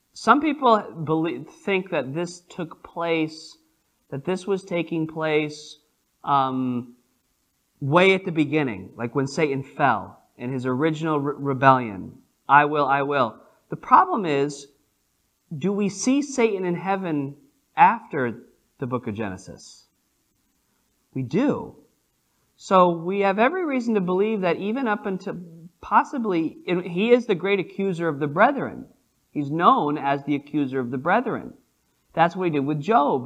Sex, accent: male, American